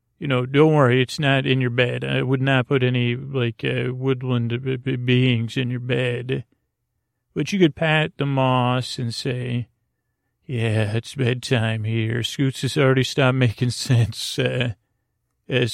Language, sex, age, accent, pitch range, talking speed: English, male, 40-59, American, 120-135 Hz, 155 wpm